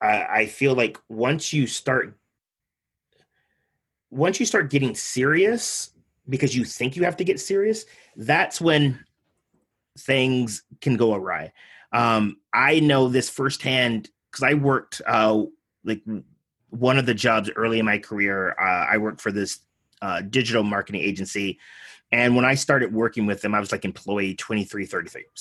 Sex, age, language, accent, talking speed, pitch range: male, 30-49, English, American, 155 wpm, 105-135 Hz